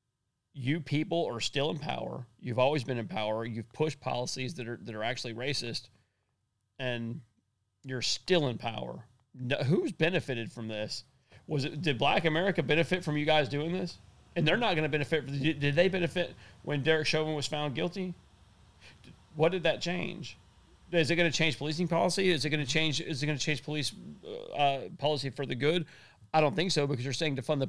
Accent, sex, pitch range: American, male, 125-160 Hz